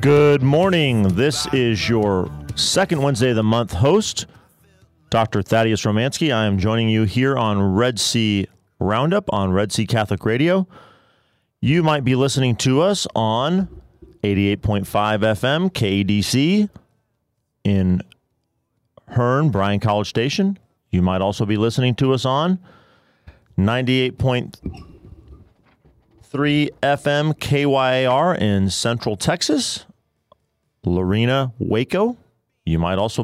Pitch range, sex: 100-135 Hz, male